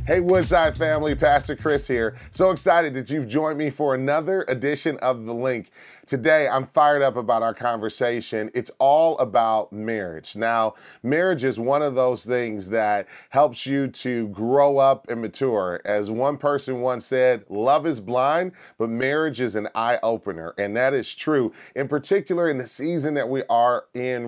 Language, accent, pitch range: English, American, 120-150 Hz